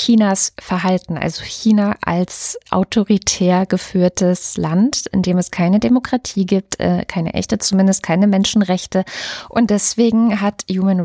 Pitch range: 180-215 Hz